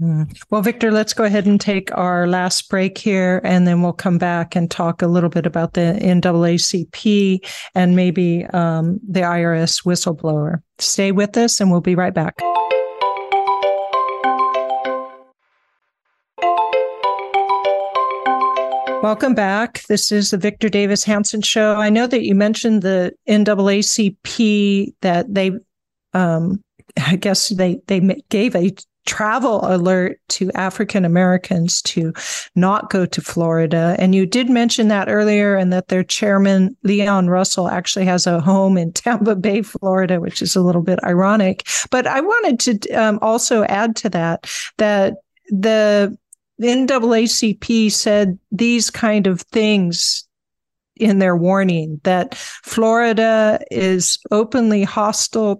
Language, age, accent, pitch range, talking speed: English, 50-69, American, 180-215 Hz, 135 wpm